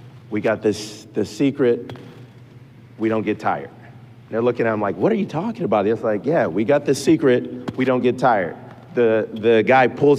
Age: 30-49